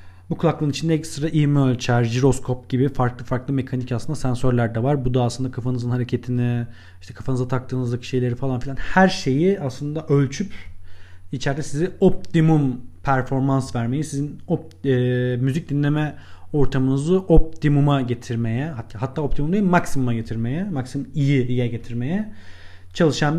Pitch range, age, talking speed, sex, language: 120-175 Hz, 40-59, 135 wpm, male, Turkish